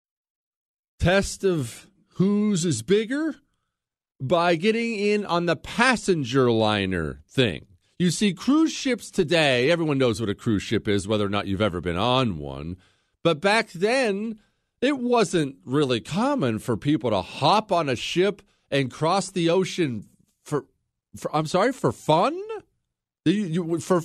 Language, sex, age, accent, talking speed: English, male, 40-59, American, 145 wpm